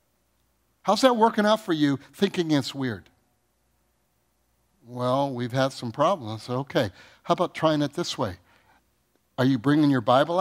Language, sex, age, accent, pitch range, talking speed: English, male, 60-79, American, 130-195 Hz, 160 wpm